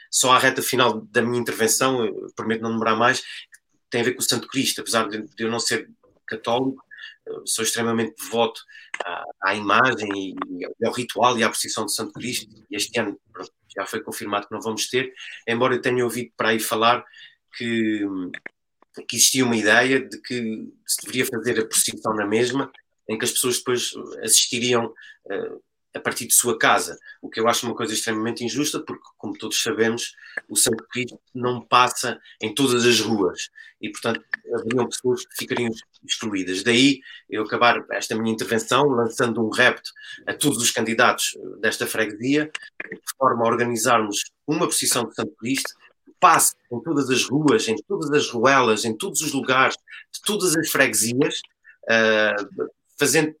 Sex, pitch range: male, 115-150 Hz